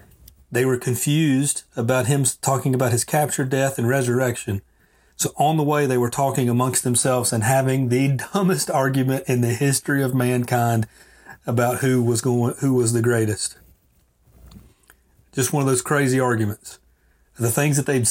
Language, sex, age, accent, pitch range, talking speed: English, male, 40-59, American, 115-135 Hz, 160 wpm